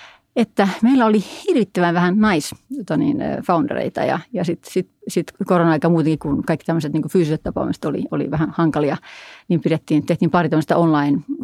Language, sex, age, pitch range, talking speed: Finnish, female, 30-49, 160-190 Hz, 155 wpm